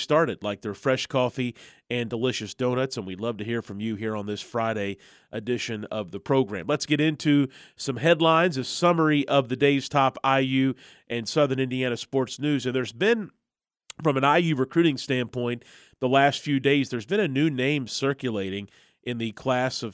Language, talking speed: English, 185 wpm